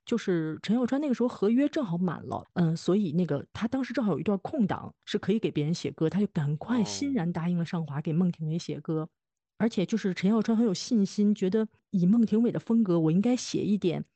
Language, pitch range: Chinese, 170-230 Hz